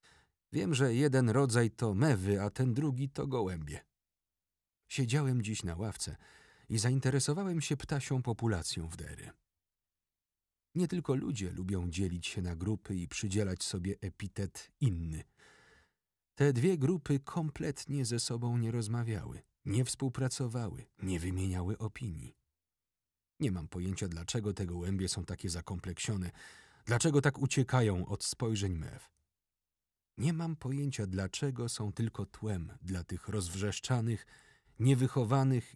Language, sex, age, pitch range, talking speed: Polish, male, 40-59, 95-130 Hz, 125 wpm